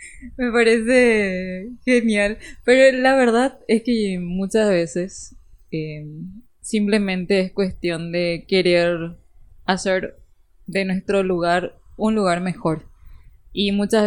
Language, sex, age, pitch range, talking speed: Spanish, female, 20-39, 175-220 Hz, 105 wpm